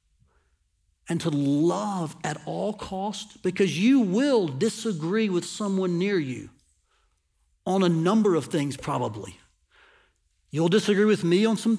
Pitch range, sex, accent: 175-245 Hz, male, American